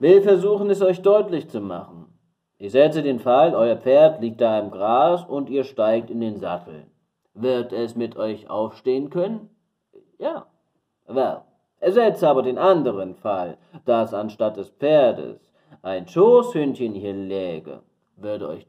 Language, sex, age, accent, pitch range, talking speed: German, male, 30-49, German, 110-180 Hz, 150 wpm